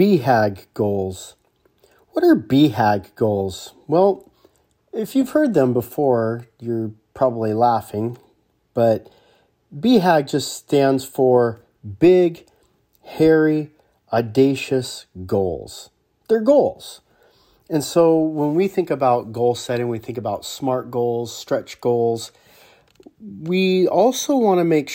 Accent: American